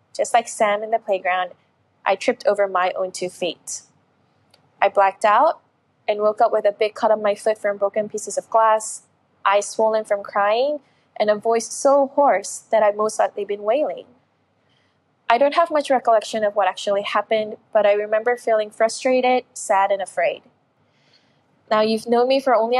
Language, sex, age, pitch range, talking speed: Russian, female, 20-39, 205-250 Hz, 180 wpm